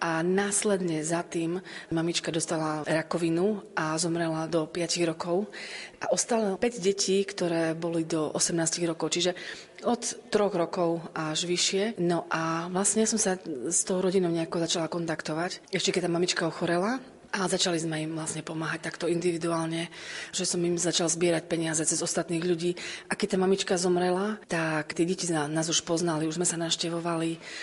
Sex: female